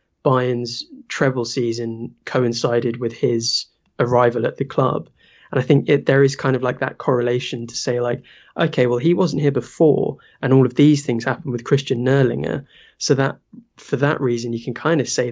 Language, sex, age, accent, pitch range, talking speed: English, male, 20-39, British, 120-140 Hz, 190 wpm